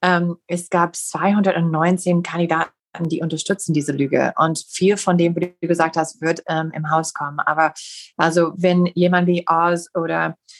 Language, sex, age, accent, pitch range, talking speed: German, female, 30-49, German, 165-190 Hz, 165 wpm